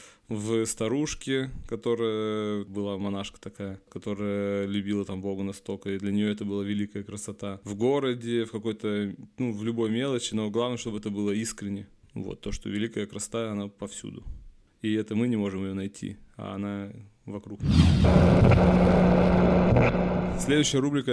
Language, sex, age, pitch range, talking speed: Russian, male, 20-39, 100-115 Hz, 145 wpm